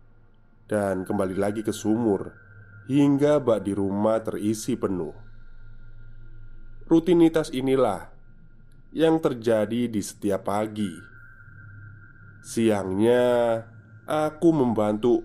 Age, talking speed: 20-39, 85 wpm